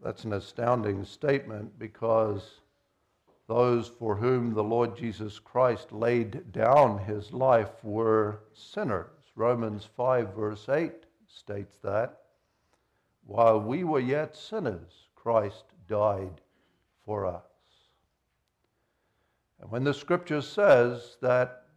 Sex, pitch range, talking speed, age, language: male, 115-145 Hz, 110 wpm, 60-79, English